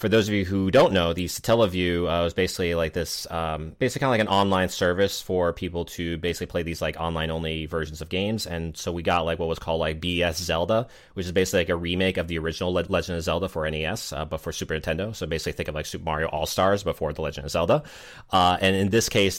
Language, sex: English, male